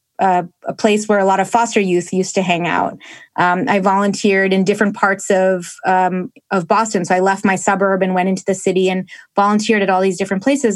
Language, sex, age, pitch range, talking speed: English, female, 20-39, 190-220 Hz, 220 wpm